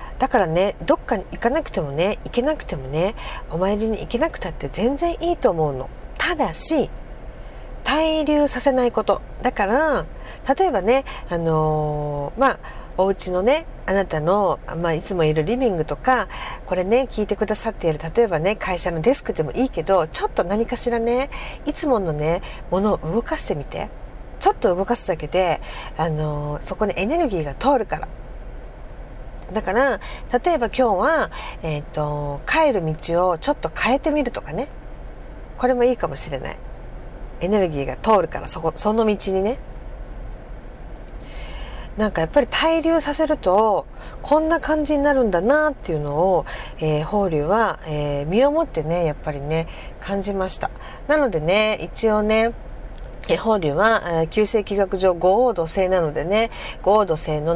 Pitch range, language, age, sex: 165-255 Hz, Japanese, 50-69, female